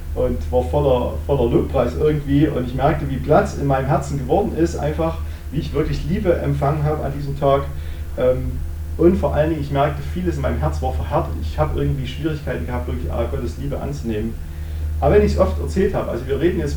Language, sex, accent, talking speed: German, male, German, 210 wpm